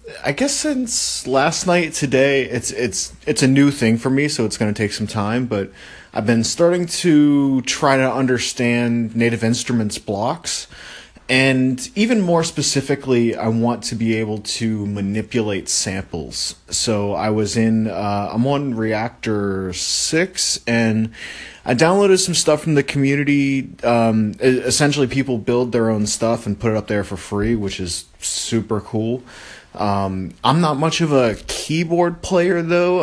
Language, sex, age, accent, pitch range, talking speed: English, male, 30-49, American, 105-140 Hz, 160 wpm